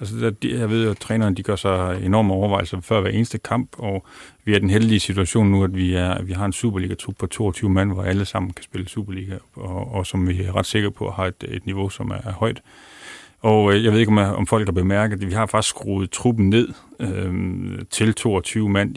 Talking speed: 230 wpm